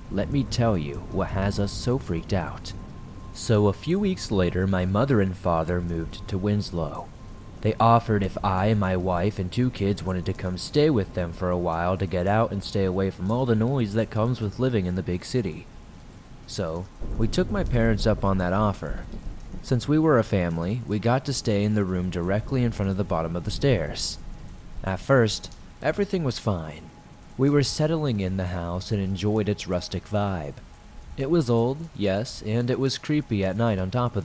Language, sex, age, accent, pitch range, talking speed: English, male, 30-49, American, 90-115 Hz, 205 wpm